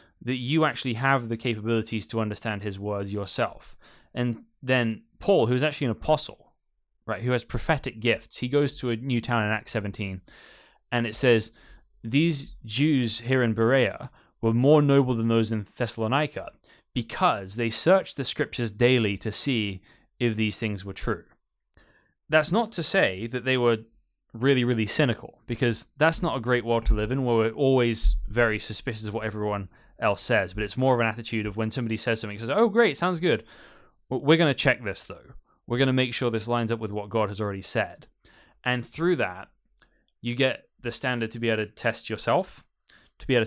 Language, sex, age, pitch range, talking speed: English, male, 20-39, 110-130 Hz, 195 wpm